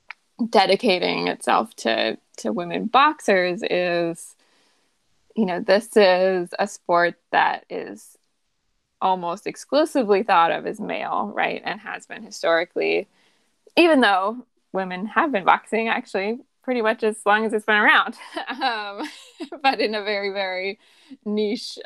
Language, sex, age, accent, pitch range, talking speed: English, female, 20-39, American, 180-220 Hz, 130 wpm